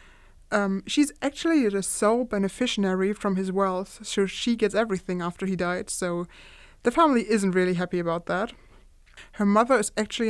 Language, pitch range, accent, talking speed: English, 190-230 Hz, German, 165 wpm